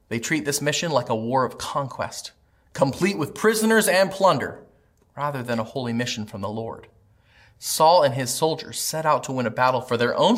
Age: 30-49